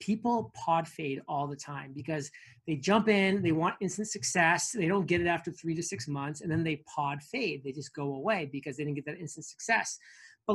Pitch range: 150-185 Hz